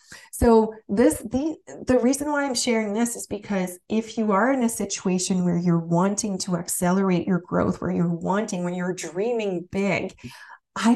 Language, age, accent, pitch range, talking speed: English, 30-49, American, 180-220 Hz, 175 wpm